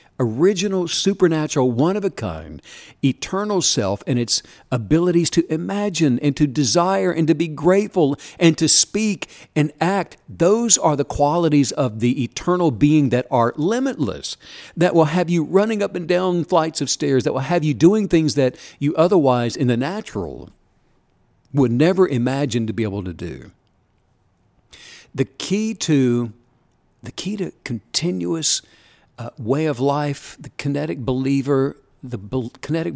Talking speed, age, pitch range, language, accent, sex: 155 wpm, 60-79, 125-170 Hz, English, American, male